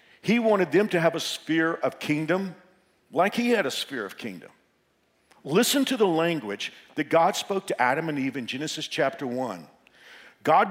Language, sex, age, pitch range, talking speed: English, male, 50-69, 165-210 Hz, 180 wpm